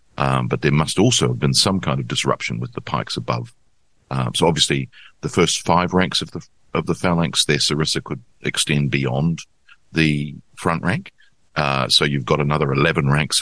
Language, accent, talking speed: English, Australian, 190 wpm